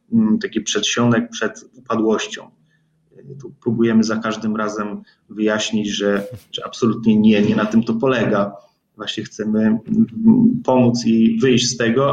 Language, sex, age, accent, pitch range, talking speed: Polish, male, 30-49, native, 110-125 Hz, 125 wpm